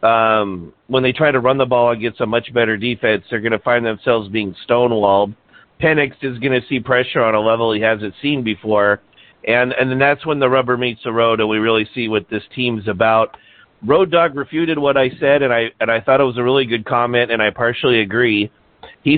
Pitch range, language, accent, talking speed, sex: 110-140 Hz, English, American, 220 wpm, male